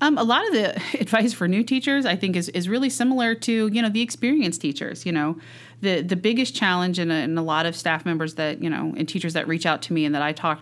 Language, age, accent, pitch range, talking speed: English, 30-49, American, 150-200 Hz, 265 wpm